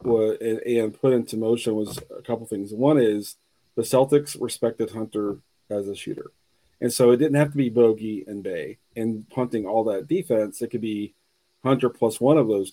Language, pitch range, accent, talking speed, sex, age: English, 110-125 Hz, American, 190 wpm, male, 40-59